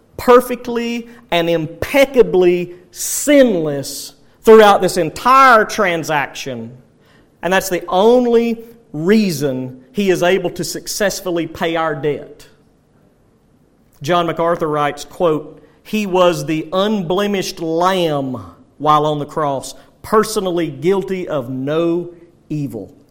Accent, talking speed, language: American, 100 wpm, English